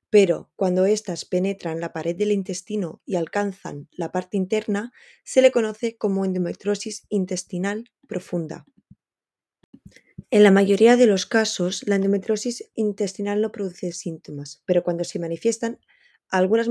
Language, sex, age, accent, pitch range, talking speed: Spanish, female, 20-39, Spanish, 185-230 Hz, 135 wpm